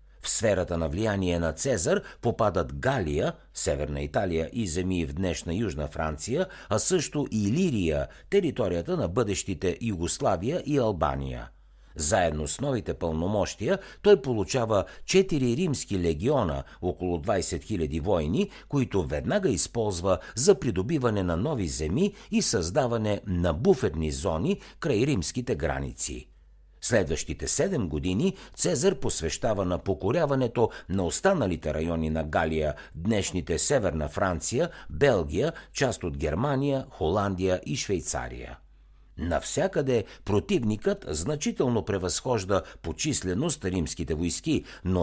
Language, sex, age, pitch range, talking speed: Bulgarian, male, 60-79, 80-125 Hz, 115 wpm